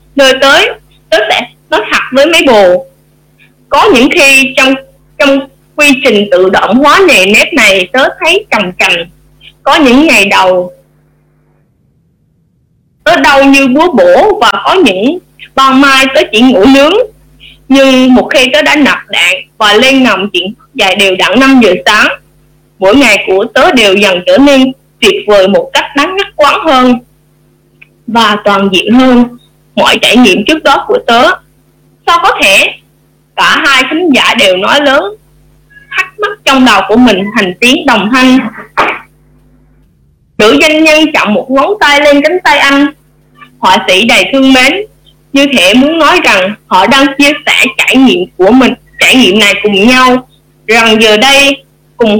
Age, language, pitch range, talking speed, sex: 20-39, Vietnamese, 200-285 Hz, 170 wpm, female